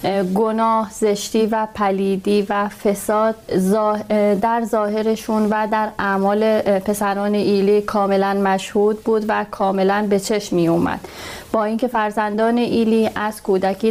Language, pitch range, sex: Persian, 200-225 Hz, female